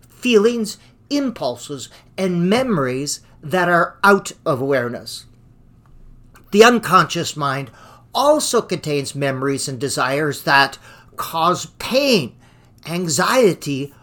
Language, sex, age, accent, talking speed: English, male, 50-69, American, 90 wpm